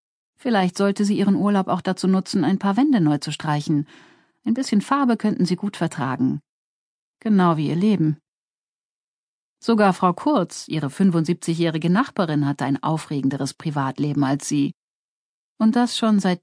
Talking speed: 150 wpm